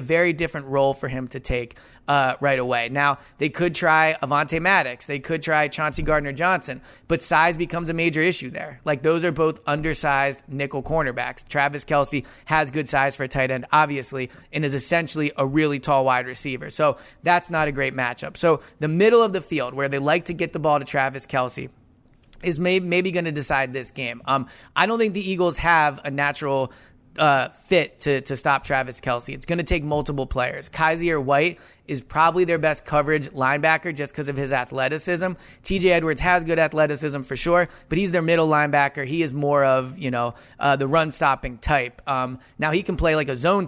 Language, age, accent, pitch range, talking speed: English, 30-49, American, 135-165 Hz, 205 wpm